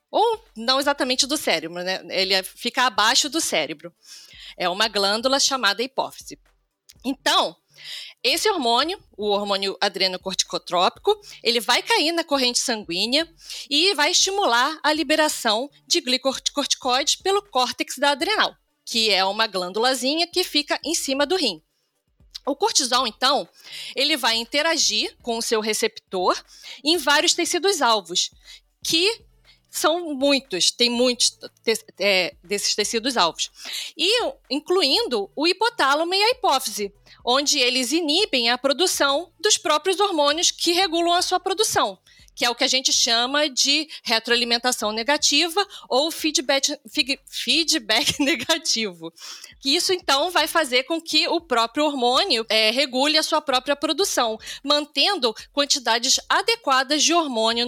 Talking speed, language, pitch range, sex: 130 wpm, Portuguese, 230-325 Hz, female